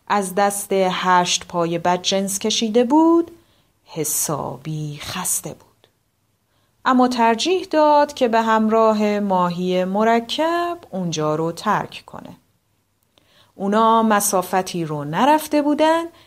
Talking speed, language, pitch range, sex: 100 wpm, Persian, 180-295 Hz, female